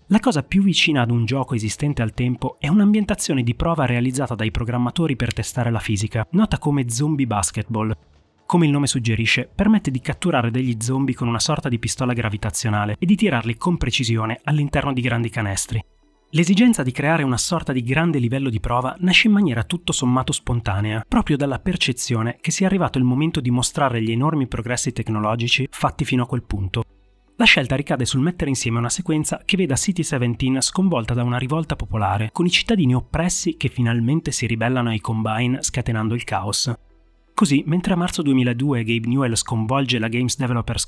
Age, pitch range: 30-49, 115-155 Hz